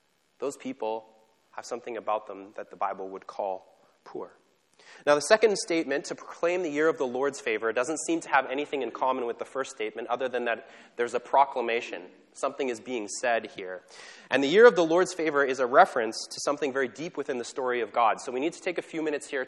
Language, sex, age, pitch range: English, male, 20-39, 115-165 Hz